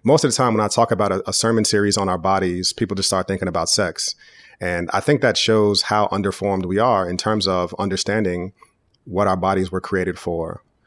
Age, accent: 30-49, American